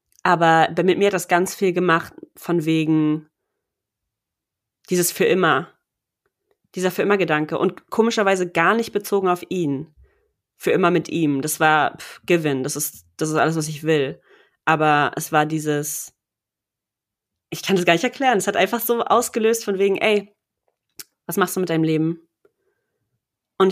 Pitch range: 165-205 Hz